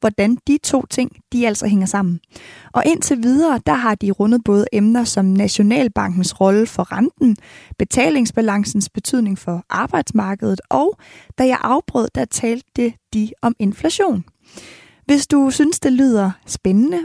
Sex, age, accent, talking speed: female, 20-39, native, 145 wpm